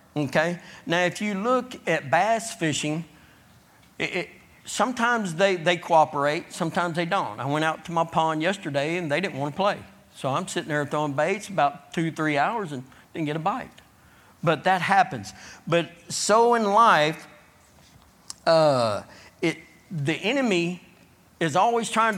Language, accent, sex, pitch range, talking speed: English, American, male, 150-185 Hz, 155 wpm